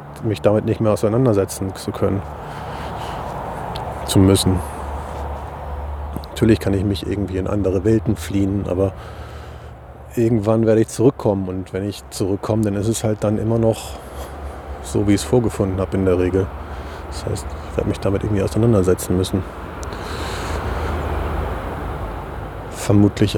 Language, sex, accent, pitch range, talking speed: German, male, German, 90-110 Hz, 135 wpm